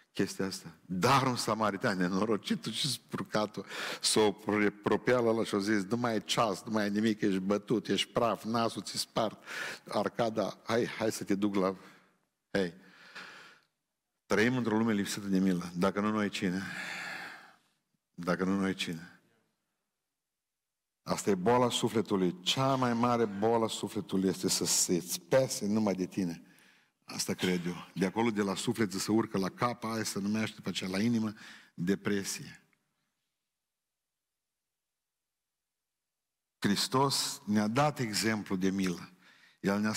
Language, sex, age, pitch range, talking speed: Romanian, male, 50-69, 95-115 Hz, 145 wpm